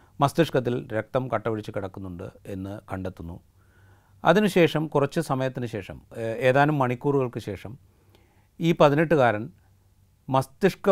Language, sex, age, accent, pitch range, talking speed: Malayalam, male, 30-49, native, 100-125 Hz, 90 wpm